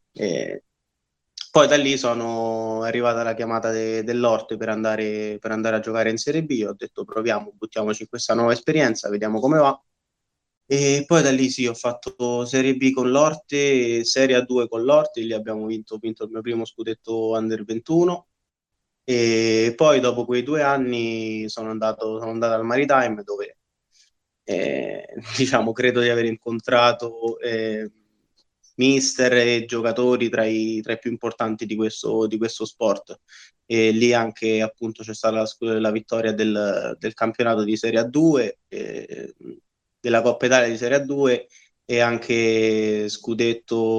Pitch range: 110-125 Hz